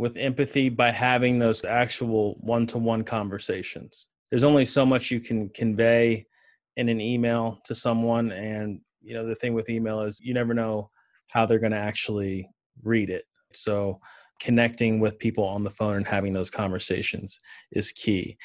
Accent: American